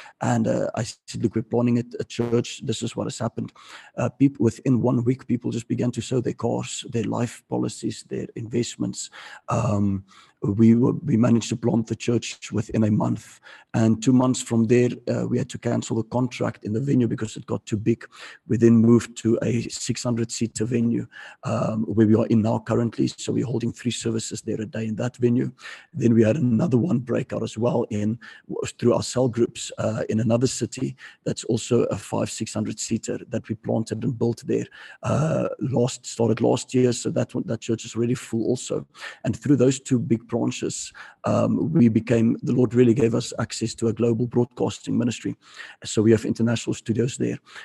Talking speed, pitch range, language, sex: 200 wpm, 110-120 Hz, English, male